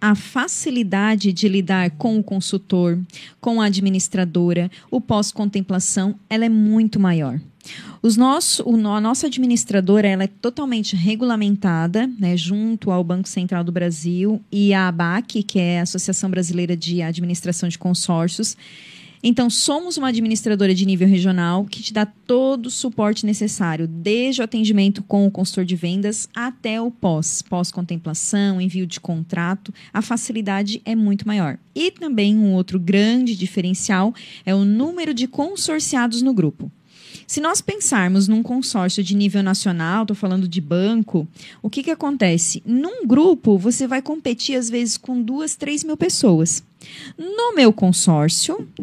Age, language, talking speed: 20-39, Portuguese, 150 wpm